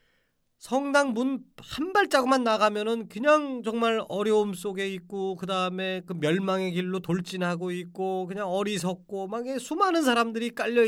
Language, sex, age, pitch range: Korean, male, 40-59, 170-245 Hz